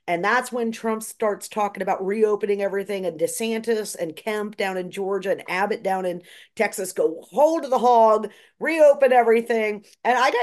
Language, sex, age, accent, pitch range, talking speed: English, female, 40-59, American, 195-270 Hz, 175 wpm